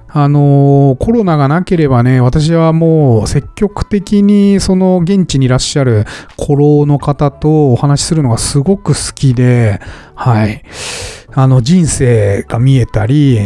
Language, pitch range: Japanese, 120-175 Hz